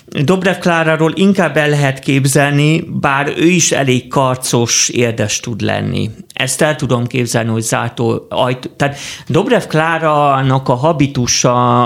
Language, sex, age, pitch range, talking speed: Hungarian, male, 30-49, 115-150 Hz, 130 wpm